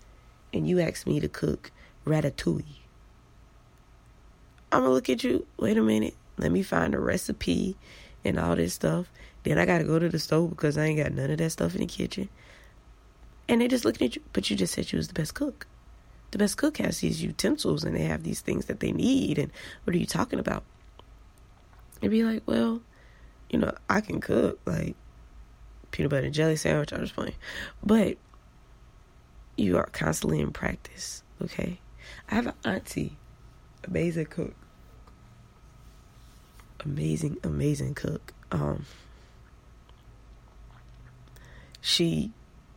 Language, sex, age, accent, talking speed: English, female, 20-39, American, 160 wpm